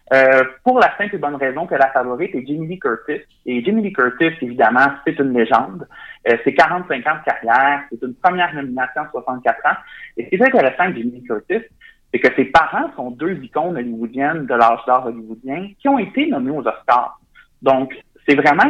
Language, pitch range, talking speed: French, 120-150 Hz, 205 wpm